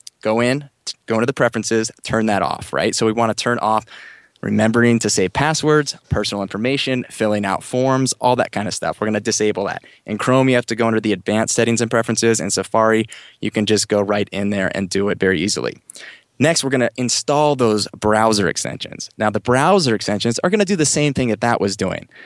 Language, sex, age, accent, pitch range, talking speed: English, male, 20-39, American, 105-130 Hz, 225 wpm